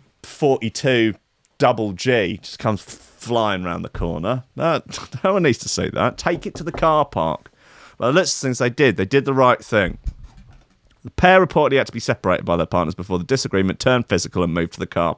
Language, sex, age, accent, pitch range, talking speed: English, male, 30-49, British, 95-150 Hz, 205 wpm